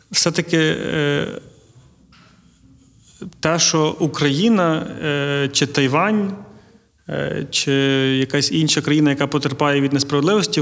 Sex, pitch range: male, 140-160 Hz